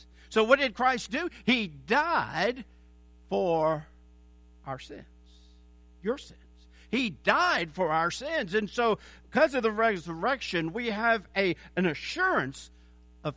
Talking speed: 125 wpm